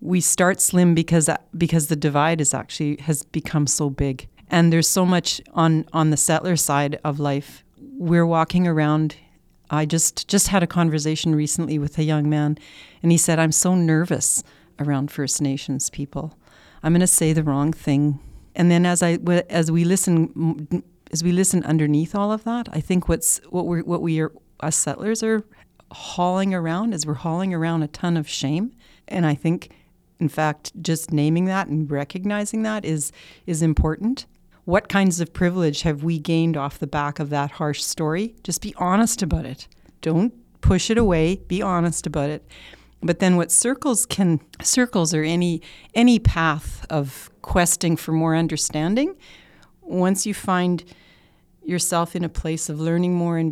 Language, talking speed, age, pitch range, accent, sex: English, 175 wpm, 40-59, 155-180 Hz, American, female